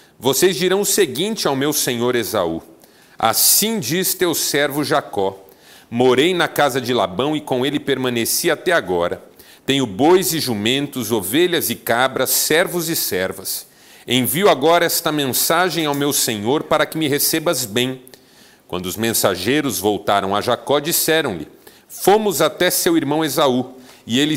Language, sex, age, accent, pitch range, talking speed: Portuguese, male, 40-59, Brazilian, 115-160 Hz, 150 wpm